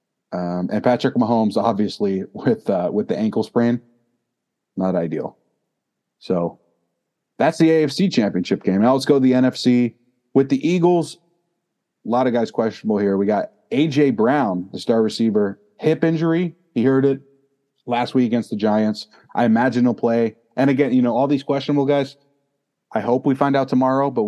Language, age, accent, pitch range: English, 30-49, American, 110-145 Hz